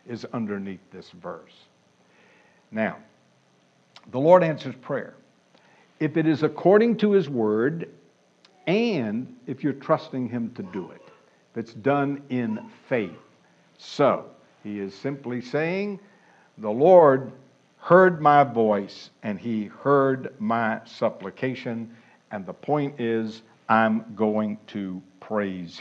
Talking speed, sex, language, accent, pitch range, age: 120 wpm, male, English, American, 110-180 Hz, 60-79